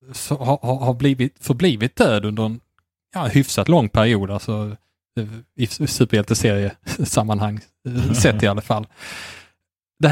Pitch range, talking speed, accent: 105-130 Hz, 125 wpm, Norwegian